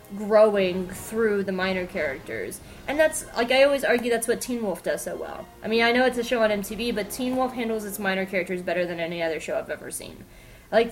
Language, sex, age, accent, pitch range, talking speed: English, female, 20-39, American, 195-255 Hz, 235 wpm